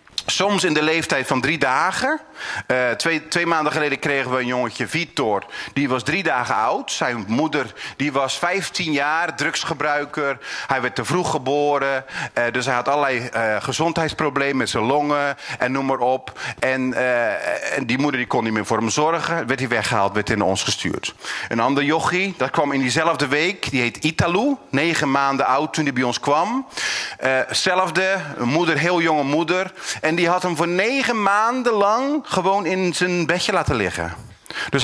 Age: 40-59